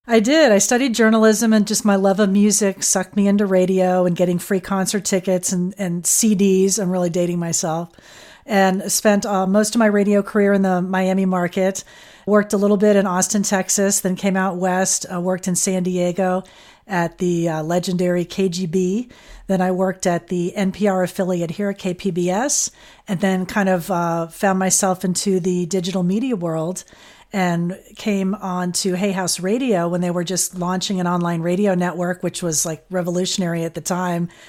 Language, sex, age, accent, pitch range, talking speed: English, female, 40-59, American, 180-210 Hz, 185 wpm